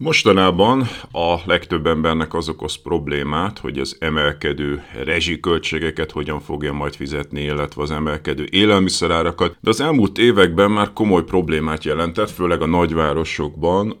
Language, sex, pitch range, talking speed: Hungarian, male, 75-90 Hz, 130 wpm